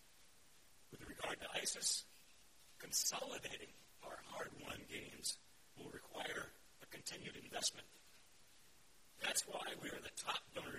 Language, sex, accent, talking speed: English, male, American, 100 wpm